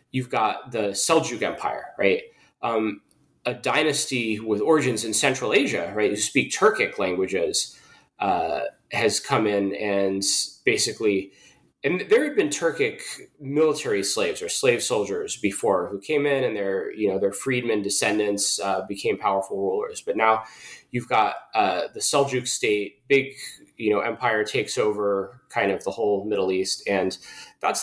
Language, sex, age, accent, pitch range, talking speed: English, male, 20-39, American, 105-155 Hz, 155 wpm